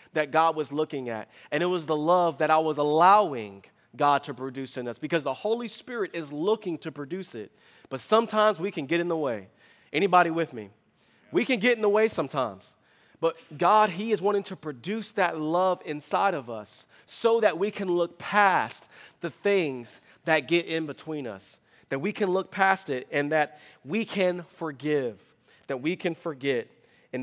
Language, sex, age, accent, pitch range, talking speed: English, male, 30-49, American, 135-175 Hz, 190 wpm